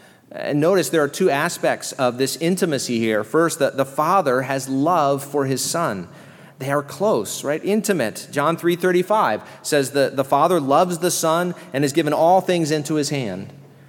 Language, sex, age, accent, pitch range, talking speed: English, male, 40-59, American, 135-175 Hz, 175 wpm